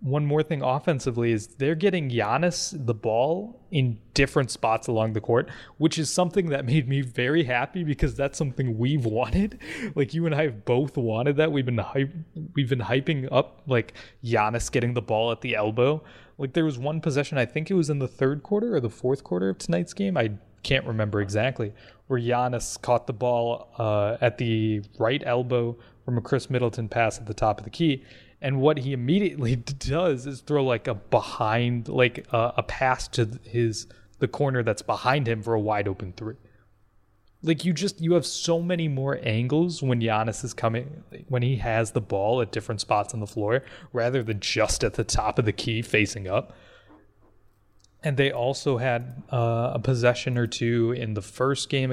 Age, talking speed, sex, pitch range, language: 20-39, 200 wpm, male, 115-145 Hz, English